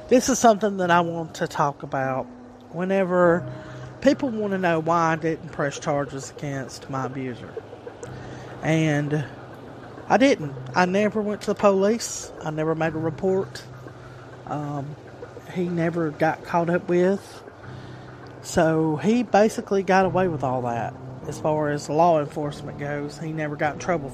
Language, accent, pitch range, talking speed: English, American, 135-175 Hz, 155 wpm